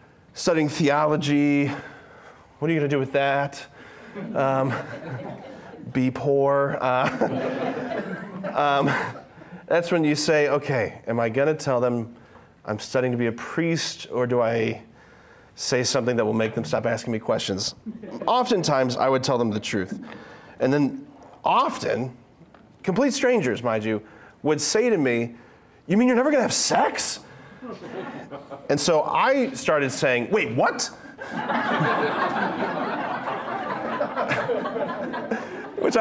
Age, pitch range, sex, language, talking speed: 30-49, 125-205 Hz, male, English, 130 wpm